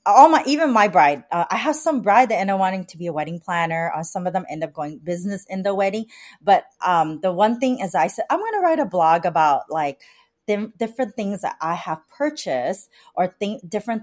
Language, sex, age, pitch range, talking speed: English, female, 30-49, 170-220 Hz, 235 wpm